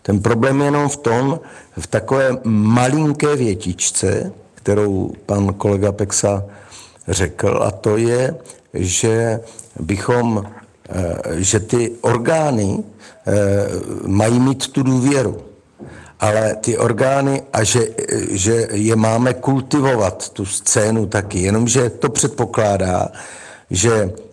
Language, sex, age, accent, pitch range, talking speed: Czech, male, 60-79, native, 105-130 Hz, 105 wpm